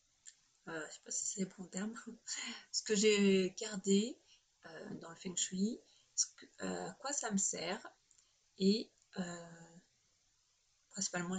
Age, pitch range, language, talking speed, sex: 30-49, 185-225 Hz, French, 150 wpm, female